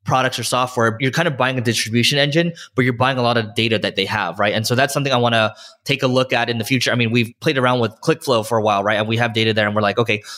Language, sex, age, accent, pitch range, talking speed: English, male, 20-39, American, 110-135 Hz, 320 wpm